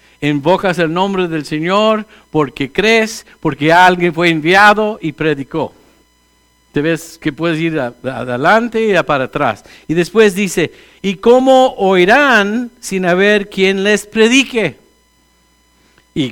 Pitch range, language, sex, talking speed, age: 130-195 Hz, English, male, 130 wpm, 50-69